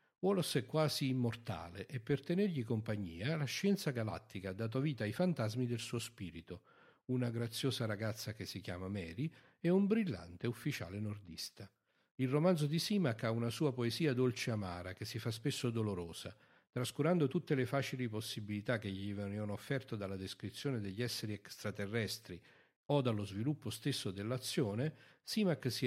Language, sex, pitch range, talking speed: Italian, male, 105-140 Hz, 155 wpm